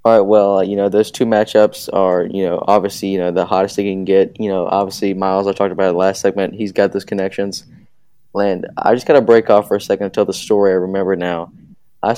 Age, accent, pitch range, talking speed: 20-39, American, 95-115 Hz, 265 wpm